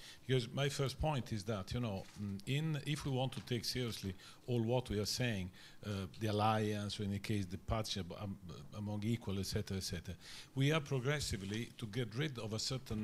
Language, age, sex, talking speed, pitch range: English, 50-69, male, 215 wpm, 105-130 Hz